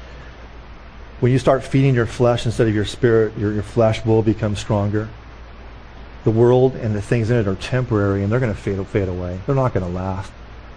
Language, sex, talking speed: English, male, 205 wpm